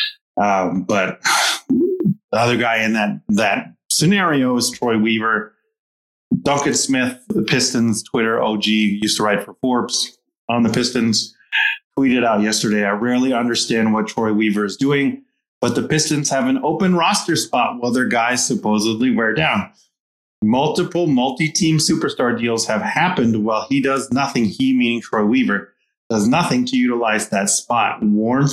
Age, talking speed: 30-49, 150 wpm